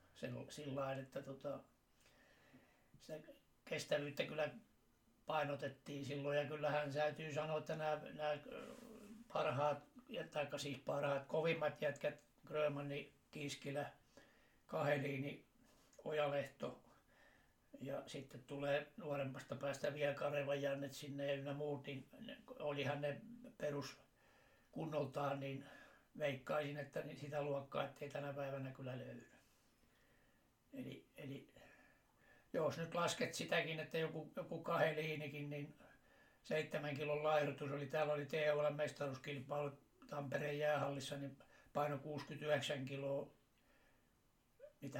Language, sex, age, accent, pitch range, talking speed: Finnish, male, 60-79, native, 140-150 Hz, 105 wpm